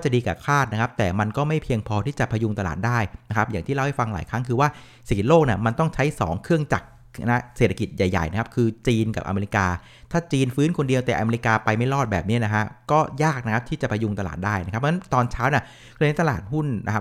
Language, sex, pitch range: Thai, male, 105-130 Hz